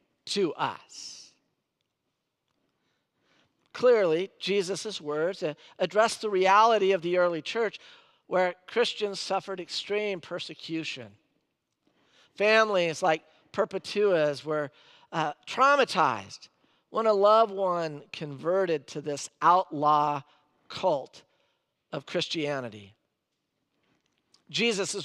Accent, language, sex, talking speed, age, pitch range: American, English, male, 85 wpm, 50-69, 155-220 Hz